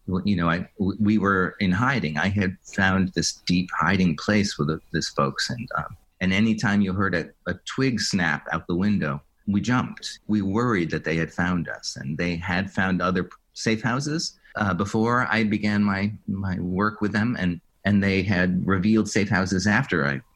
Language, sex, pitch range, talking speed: English, male, 85-105 Hz, 190 wpm